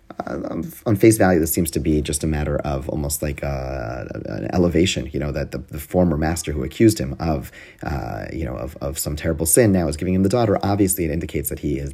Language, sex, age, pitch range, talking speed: English, male, 30-49, 75-90 Hz, 240 wpm